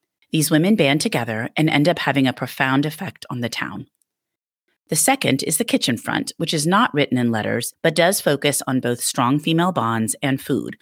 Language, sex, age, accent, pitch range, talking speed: English, female, 30-49, American, 130-175 Hz, 200 wpm